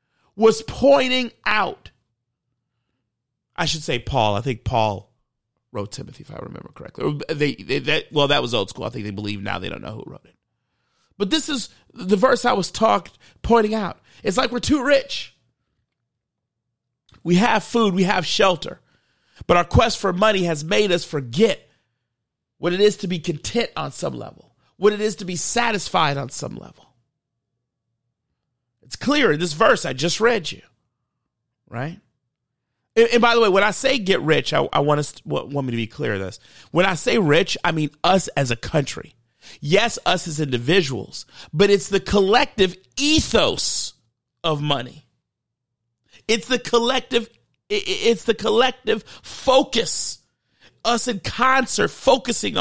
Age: 40-59